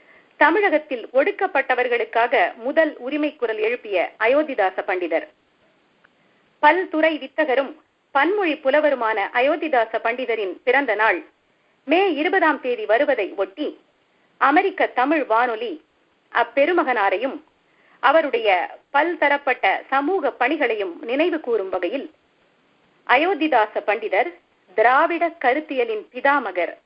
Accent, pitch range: native, 240-325 Hz